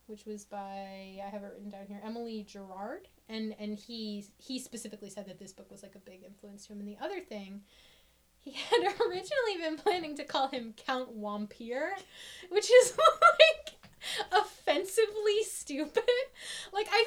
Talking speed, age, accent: 170 wpm, 10-29, American